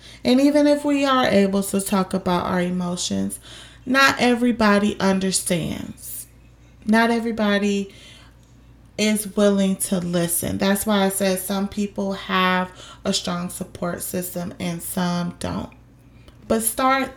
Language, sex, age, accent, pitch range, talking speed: English, female, 20-39, American, 180-210 Hz, 125 wpm